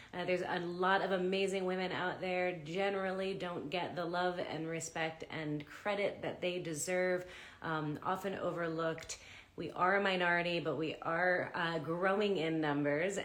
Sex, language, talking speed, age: female, English, 160 wpm, 30-49